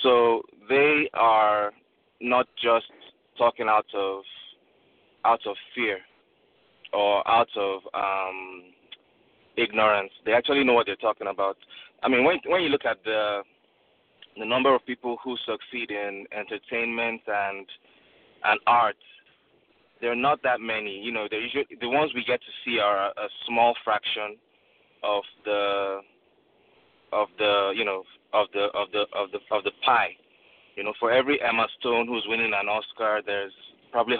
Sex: male